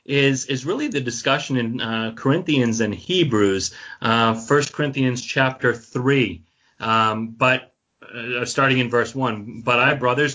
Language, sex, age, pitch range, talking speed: English, male, 30-49, 120-145 Hz, 145 wpm